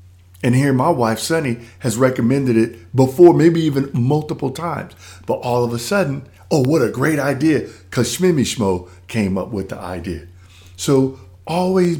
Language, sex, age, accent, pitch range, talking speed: English, male, 50-69, American, 90-130 Hz, 155 wpm